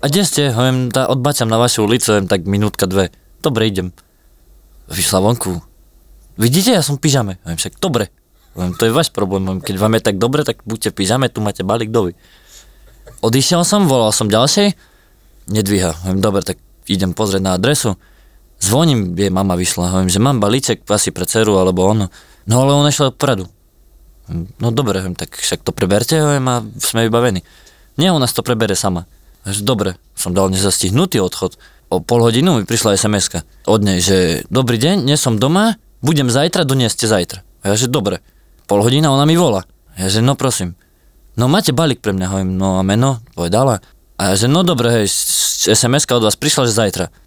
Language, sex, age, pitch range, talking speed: Slovak, male, 20-39, 95-130 Hz, 185 wpm